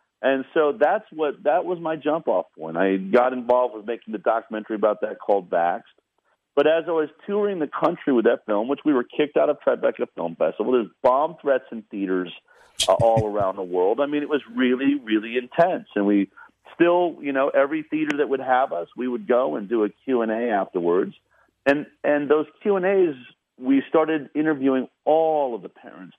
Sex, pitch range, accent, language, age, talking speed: male, 115-160 Hz, American, English, 40-59, 200 wpm